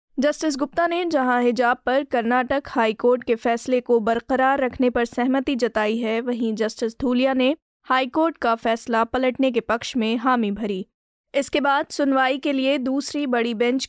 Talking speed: 165 wpm